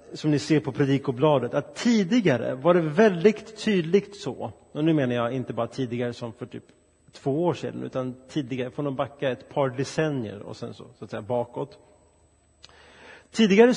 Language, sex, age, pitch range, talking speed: Swedish, male, 30-49, 125-160 Hz, 180 wpm